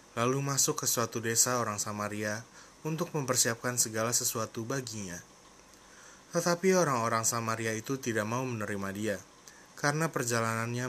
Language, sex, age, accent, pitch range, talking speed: Indonesian, male, 20-39, native, 110-135 Hz, 120 wpm